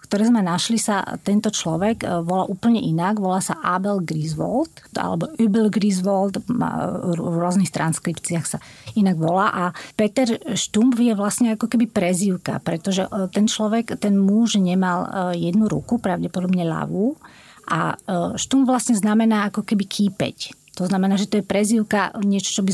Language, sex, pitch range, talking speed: Slovak, female, 185-225 Hz, 150 wpm